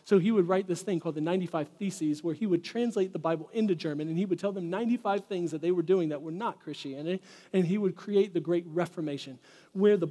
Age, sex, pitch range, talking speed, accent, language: 40-59, male, 150-185 Hz, 250 wpm, American, English